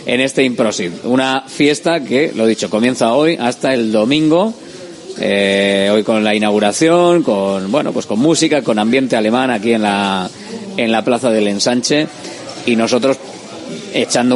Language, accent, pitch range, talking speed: Spanish, Spanish, 105-135 Hz, 160 wpm